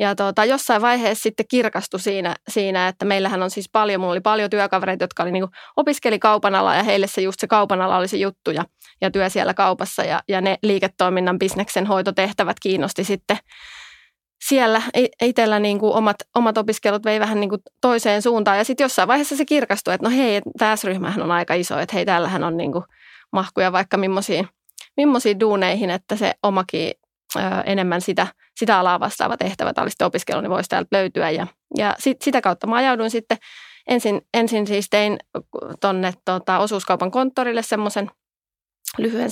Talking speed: 170 wpm